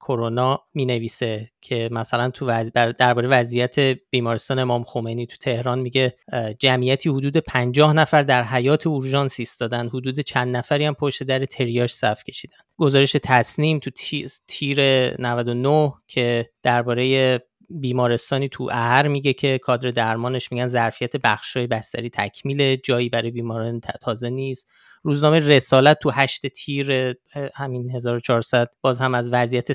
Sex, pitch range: male, 120-135 Hz